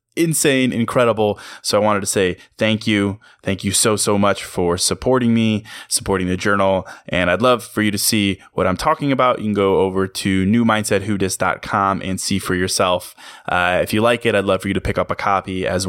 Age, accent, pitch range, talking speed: 20-39, American, 95-115 Hz, 210 wpm